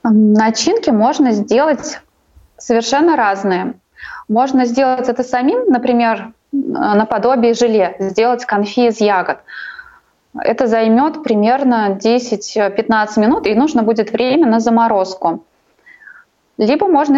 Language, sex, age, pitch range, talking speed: Russian, female, 20-39, 210-255 Hz, 100 wpm